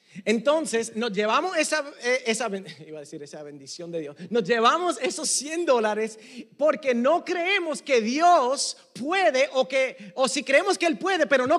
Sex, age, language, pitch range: male, 40-59, Spanish, 185-255 Hz